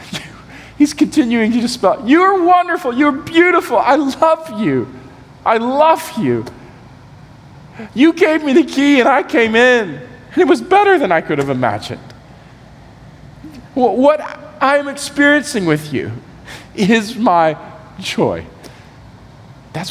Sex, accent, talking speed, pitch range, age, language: male, American, 120 wpm, 140-230 Hz, 40-59, English